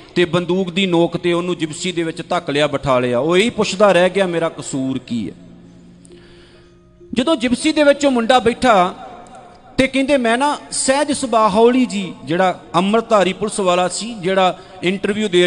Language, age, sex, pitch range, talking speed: Punjabi, 40-59, male, 175-220 Hz, 175 wpm